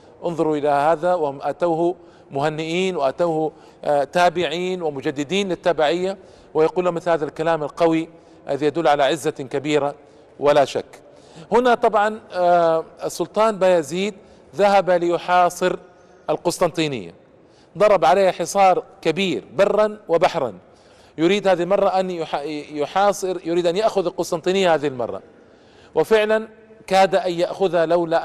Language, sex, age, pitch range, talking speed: Arabic, male, 40-59, 155-195 Hz, 115 wpm